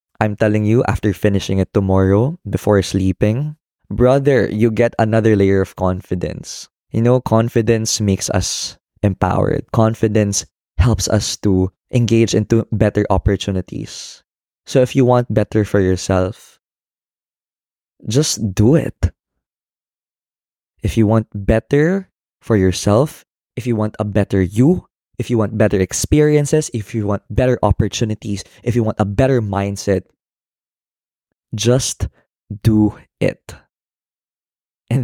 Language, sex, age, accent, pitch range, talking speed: Filipino, male, 20-39, native, 100-125 Hz, 125 wpm